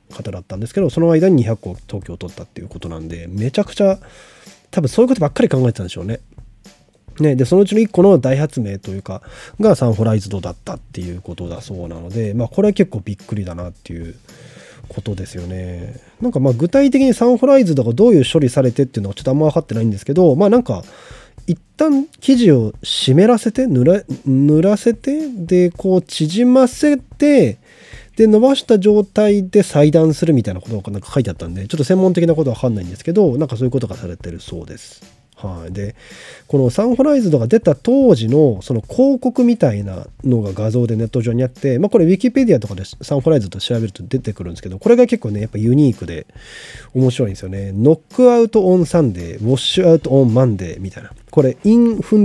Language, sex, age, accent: Japanese, male, 20-39, native